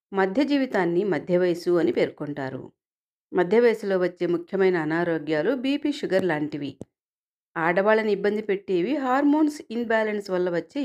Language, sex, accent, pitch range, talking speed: Telugu, female, native, 175-255 Hz, 115 wpm